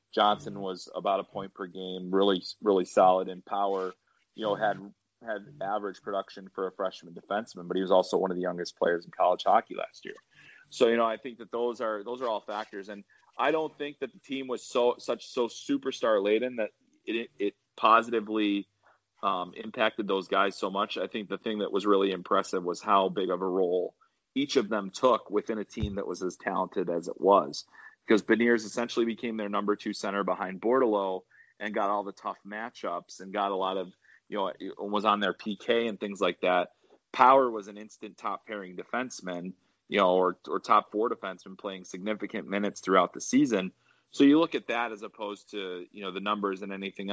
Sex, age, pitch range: male, 30-49, 95-110 Hz